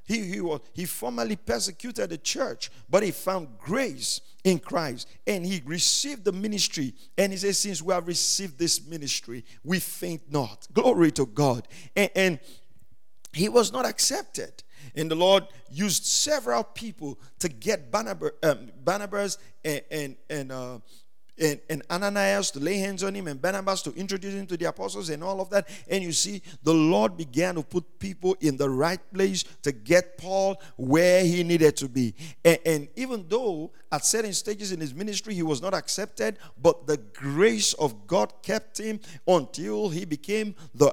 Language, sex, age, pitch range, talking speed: English, male, 50-69, 145-195 Hz, 175 wpm